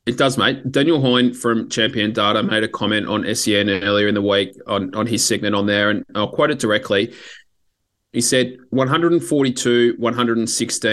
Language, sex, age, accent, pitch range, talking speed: English, male, 20-39, Australian, 105-120 Hz, 175 wpm